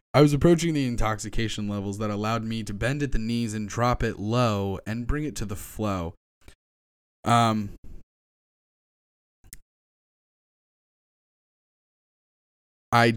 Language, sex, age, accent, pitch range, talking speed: English, male, 20-39, American, 95-130 Hz, 120 wpm